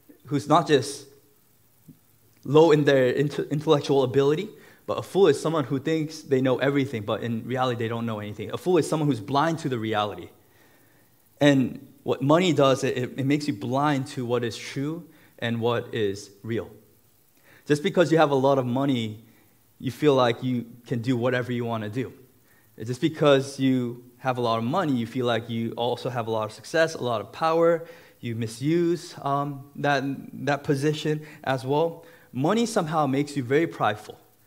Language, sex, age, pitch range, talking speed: English, male, 20-39, 120-145 Hz, 185 wpm